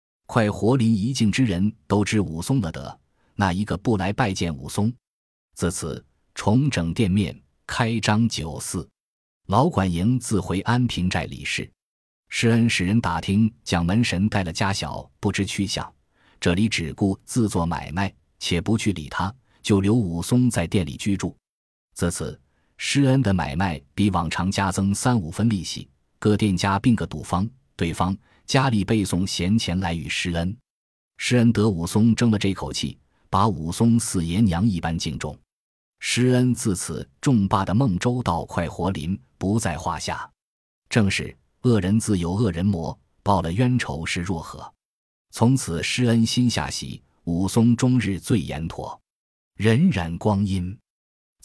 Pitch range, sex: 85-115 Hz, male